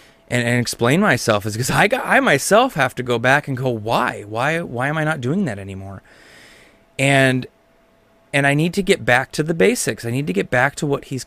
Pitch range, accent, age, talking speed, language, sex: 115-150 Hz, American, 20-39, 230 wpm, English, male